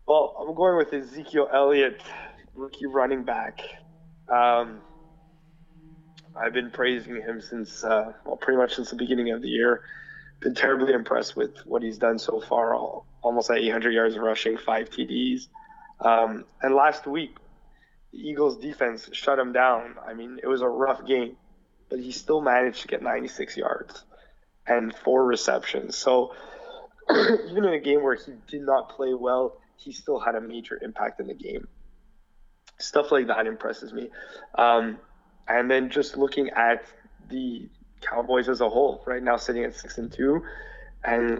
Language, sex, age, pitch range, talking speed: English, male, 20-39, 120-150 Hz, 165 wpm